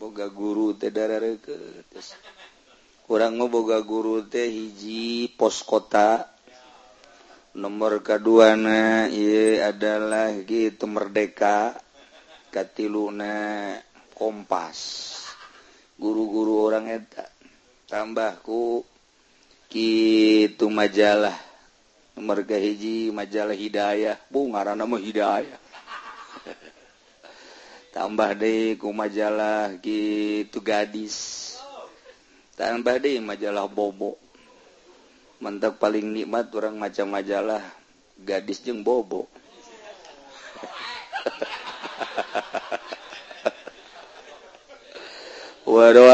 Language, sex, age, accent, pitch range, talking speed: Indonesian, male, 40-59, native, 105-115 Hz, 65 wpm